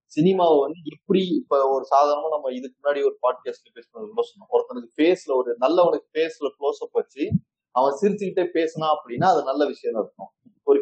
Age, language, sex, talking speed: 30-49, Tamil, male, 175 wpm